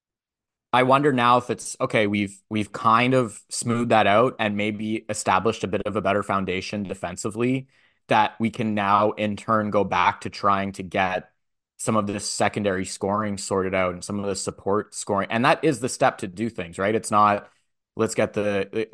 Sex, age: male, 20-39